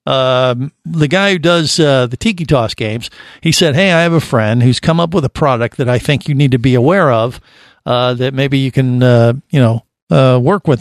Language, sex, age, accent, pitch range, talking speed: English, male, 50-69, American, 130-170 Hz, 245 wpm